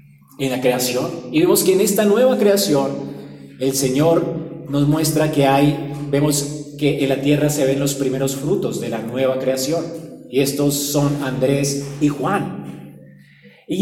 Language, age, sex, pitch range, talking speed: Spanish, 30-49, male, 135-185 Hz, 160 wpm